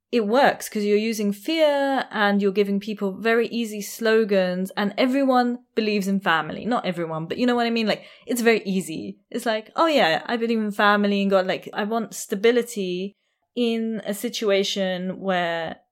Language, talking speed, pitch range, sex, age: English, 180 wpm, 190-230 Hz, female, 20-39